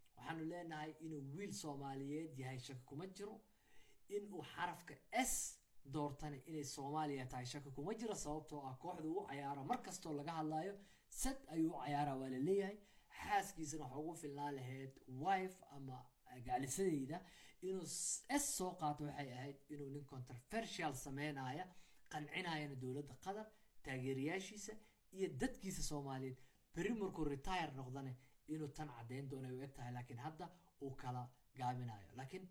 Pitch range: 135-175 Hz